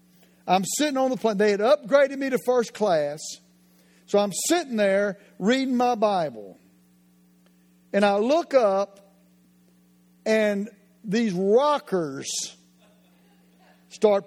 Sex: male